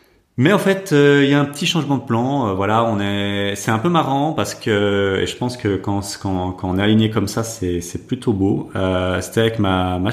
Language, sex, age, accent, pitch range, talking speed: French, male, 30-49, French, 100-120 Hz, 260 wpm